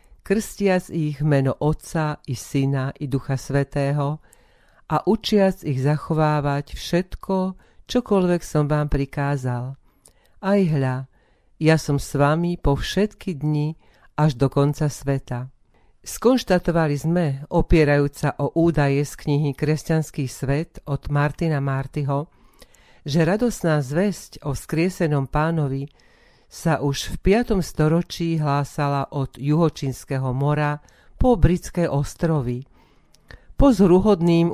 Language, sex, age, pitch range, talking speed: Slovak, female, 40-59, 140-165 Hz, 110 wpm